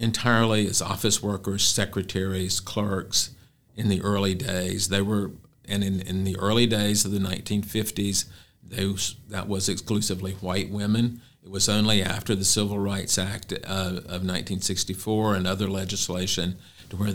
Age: 50-69